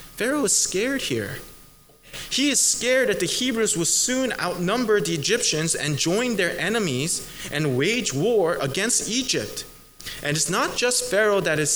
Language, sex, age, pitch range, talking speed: English, male, 20-39, 115-165 Hz, 160 wpm